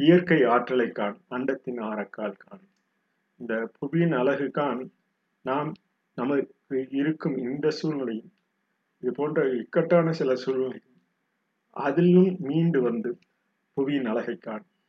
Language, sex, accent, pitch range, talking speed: Tamil, male, native, 130-185 Hz, 90 wpm